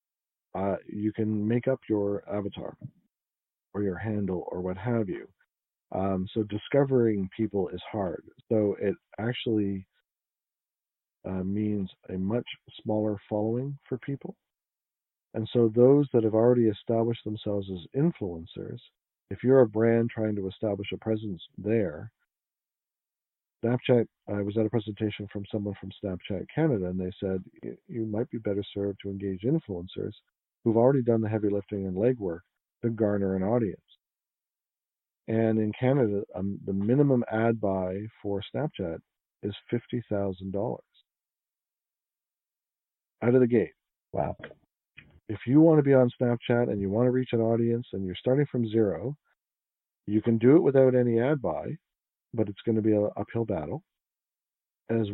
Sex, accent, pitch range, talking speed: male, American, 100-120 Hz, 150 wpm